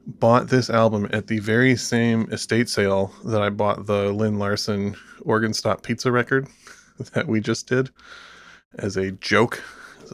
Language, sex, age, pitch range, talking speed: English, male, 20-39, 100-120 Hz, 160 wpm